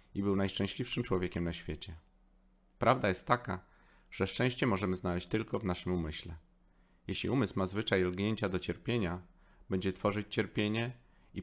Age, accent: 30-49, native